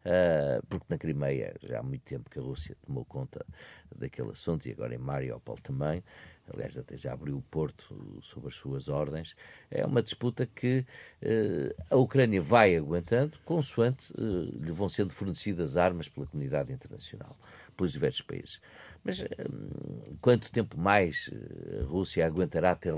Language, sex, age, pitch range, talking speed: Portuguese, male, 50-69, 85-120 Hz, 150 wpm